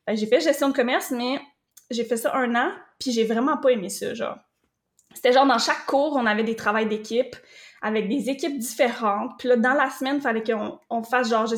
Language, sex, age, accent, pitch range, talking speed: French, female, 20-39, Canadian, 220-270 Hz, 235 wpm